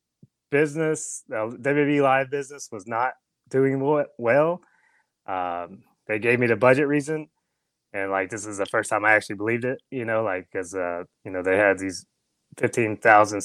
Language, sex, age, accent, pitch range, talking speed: English, male, 30-49, American, 100-125 Hz, 175 wpm